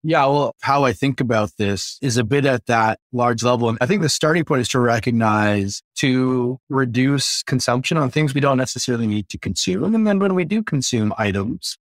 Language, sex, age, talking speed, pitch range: English, male, 20-39, 210 wpm, 105-140 Hz